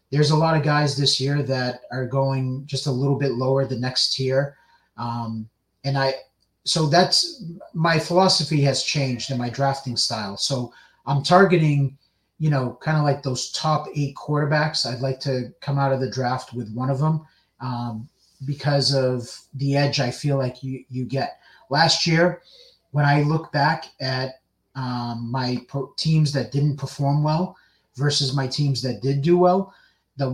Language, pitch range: English, 130-155 Hz